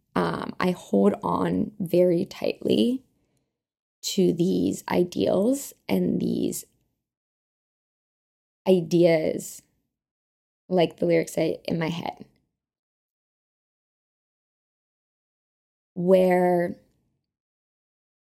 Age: 20-39